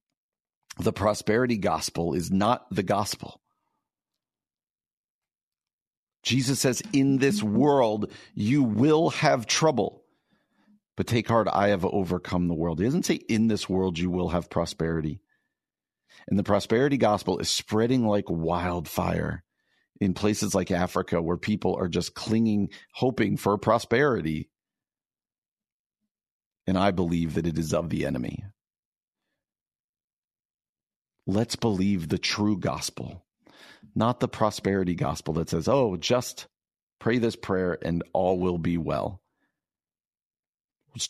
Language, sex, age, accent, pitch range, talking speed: English, male, 50-69, American, 90-120 Hz, 125 wpm